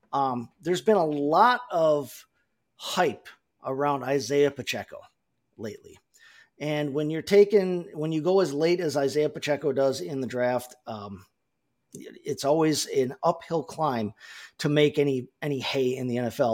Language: English